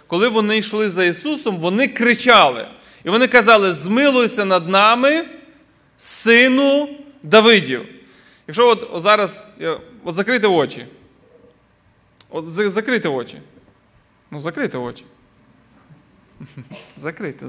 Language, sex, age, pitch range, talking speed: Ukrainian, male, 20-39, 155-225 Hz, 100 wpm